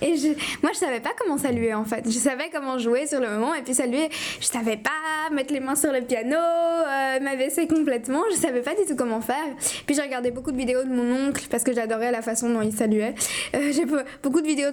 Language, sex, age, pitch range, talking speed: French, female, 10-29, 245-290 Hz, 250 wpm